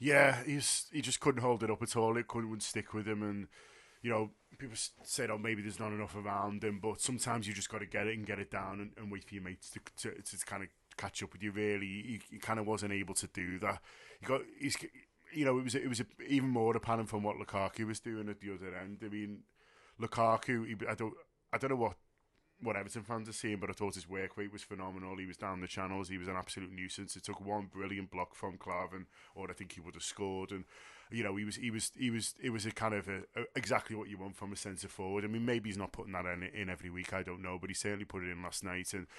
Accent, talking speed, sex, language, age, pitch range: British, 280 wpm, male, English, 20-39, 95-110 Hz